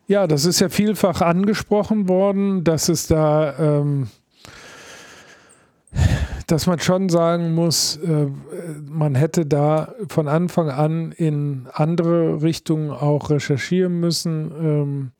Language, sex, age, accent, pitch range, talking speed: German, male, 50-69, German, 145-165 Hz, 120 wpm